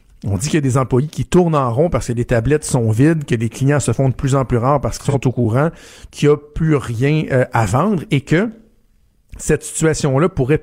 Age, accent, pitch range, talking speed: 50-69, Canadian, 125-155 Hz, 255 wpm